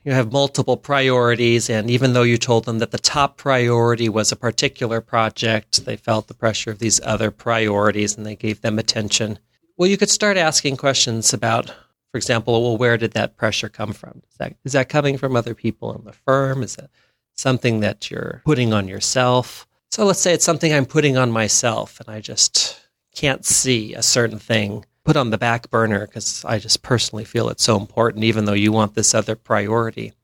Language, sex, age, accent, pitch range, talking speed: English, male, 40-59, American, 110-130 Hz, 200 wpm